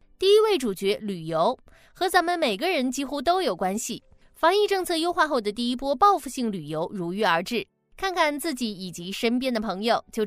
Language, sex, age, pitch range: Chinese, female, 20-39, 210-320 Hz